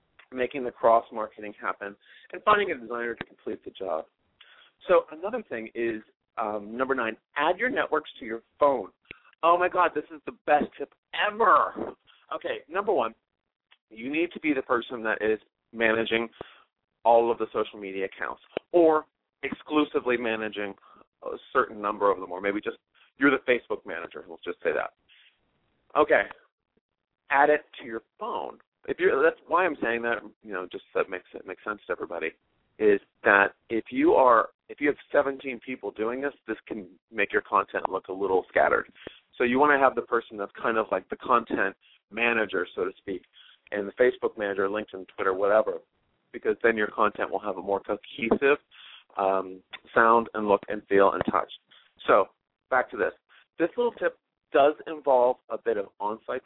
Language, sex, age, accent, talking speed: English, male, 40-59, American, 180 wpm